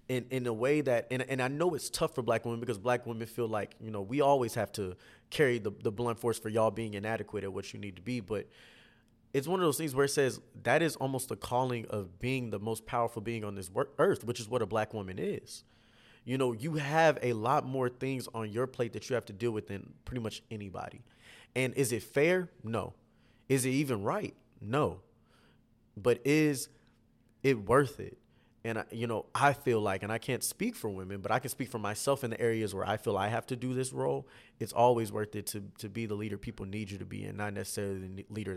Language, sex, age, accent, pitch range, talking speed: English, male, 20-39, American, 105-125 Hz, 240 wpm